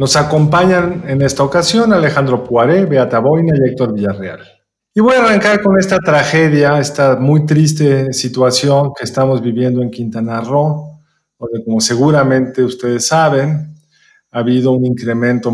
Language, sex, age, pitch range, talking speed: Spanish, male, 40-59, 115-145 Hz, 145 wpm